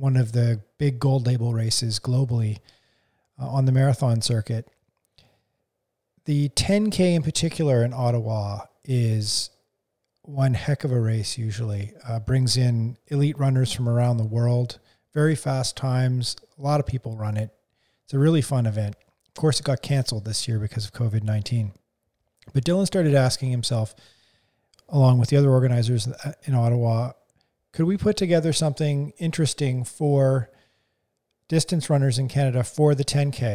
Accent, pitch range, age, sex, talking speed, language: American, 115-145 Hz, 40-59, male, 150 wpm, English